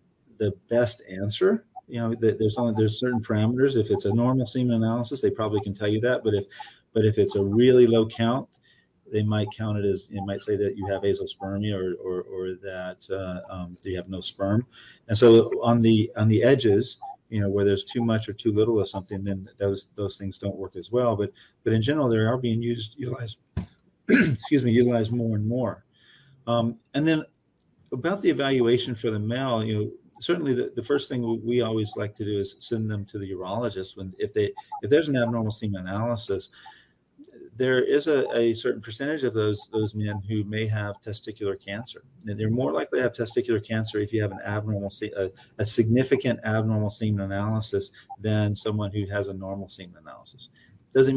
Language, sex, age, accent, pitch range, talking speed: English, male, 40-59, American, 100-120 Hz, 205 wpm